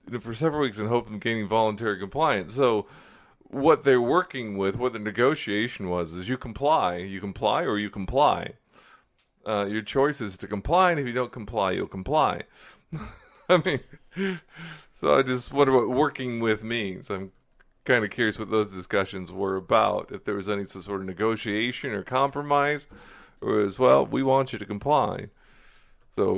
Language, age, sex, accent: English, 40-59, male, American